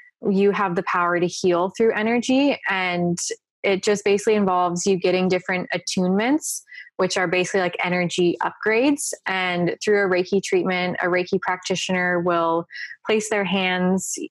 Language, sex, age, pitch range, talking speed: English, female, 20-39, 180-215 Hz, 145 wpm